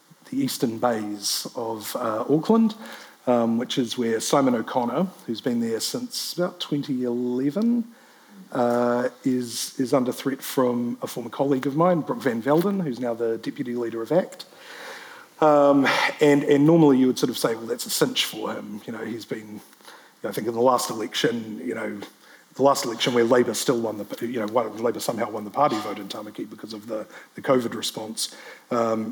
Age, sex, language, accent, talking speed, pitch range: 40-59, male, English, Australian, 190 wpm, 120-155 Hz